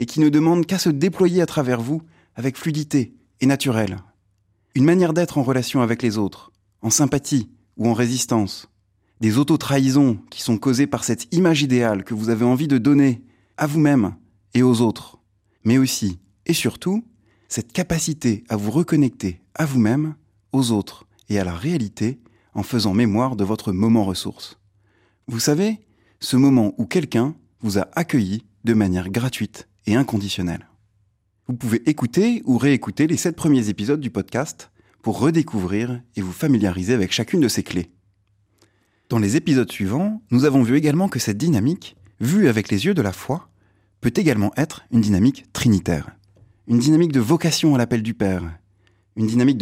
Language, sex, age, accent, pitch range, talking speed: French, male, 30-49, French, 100-140 Hz, 170 wpm